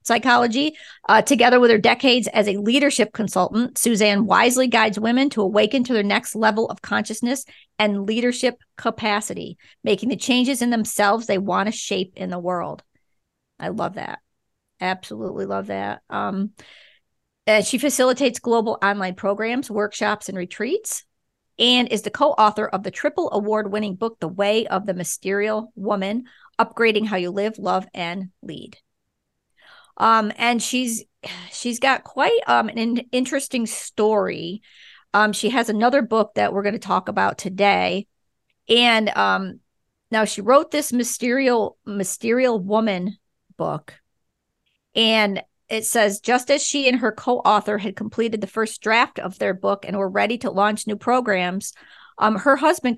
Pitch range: 205-245 Hz